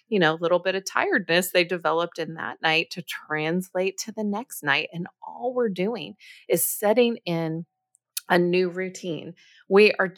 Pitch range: 165-215 Hz